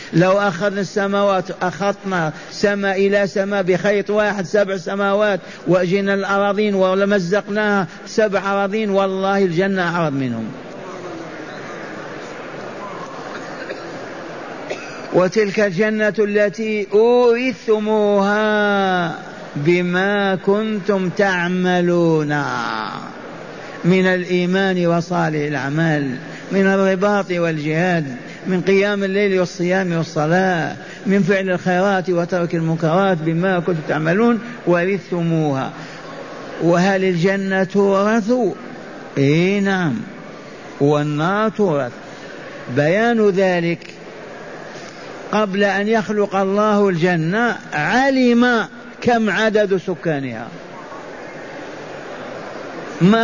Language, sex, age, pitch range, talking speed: Arabic, male, 50-69, 175-205 Hz, 75 wpm